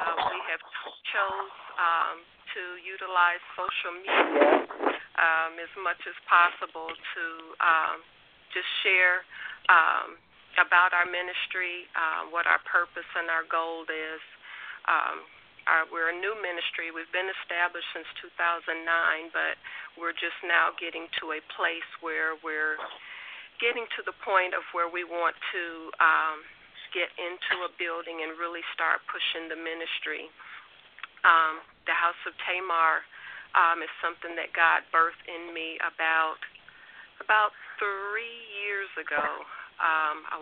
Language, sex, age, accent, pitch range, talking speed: English, female, 40-59, American, 165-180 Hz, 130 wpm